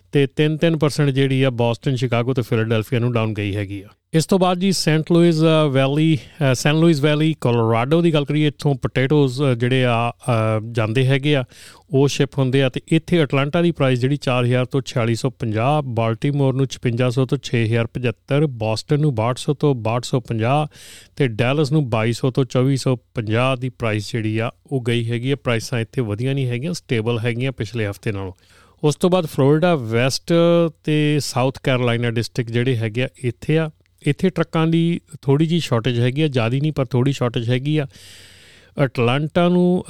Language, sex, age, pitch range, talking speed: Punjabi, male, 40-59, 120-150 Hz, 165 wpm